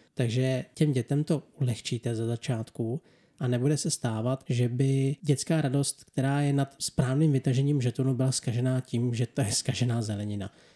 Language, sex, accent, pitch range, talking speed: Czech, male, native, 120-145 Hz, 160 wpm